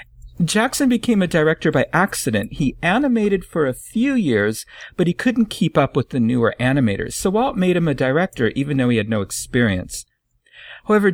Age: 50-69